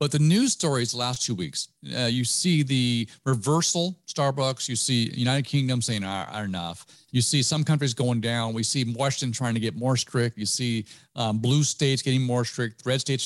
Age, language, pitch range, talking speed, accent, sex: 50-69, English, 120-155 Hz, 200 wpm, American, male